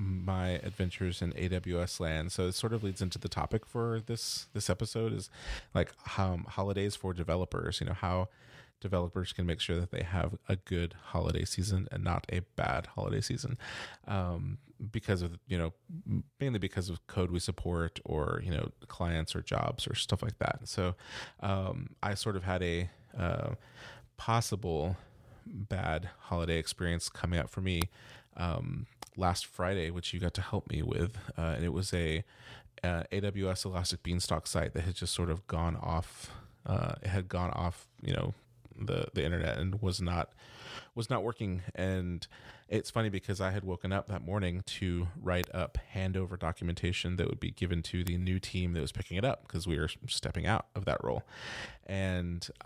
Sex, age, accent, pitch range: male, 30-49, American, 85-105 Hz